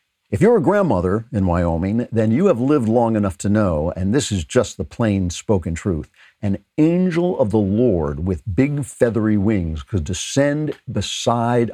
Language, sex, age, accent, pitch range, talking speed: English, male, 60-79, American, 95-125 Hz, 175 wpm